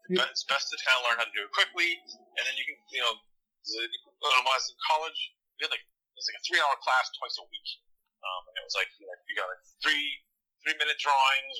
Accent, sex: American, male